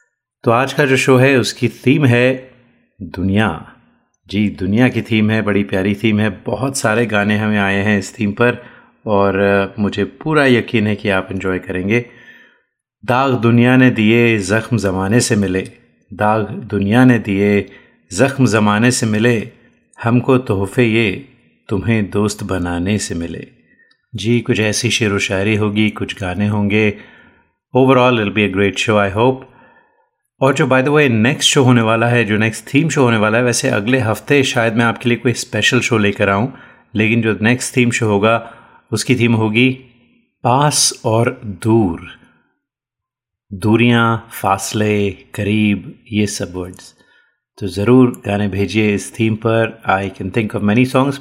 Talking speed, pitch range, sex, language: 160 wpm, 100-125 Hz, male, Hindi